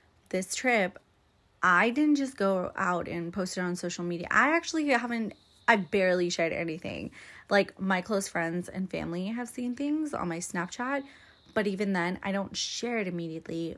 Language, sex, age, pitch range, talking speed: English, female, 20-39, 175-215 Hz, 175 wpm